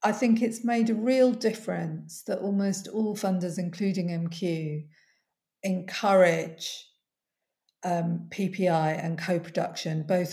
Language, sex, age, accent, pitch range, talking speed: English, female, 50-69, British, 175-210 Hz, 110 wpm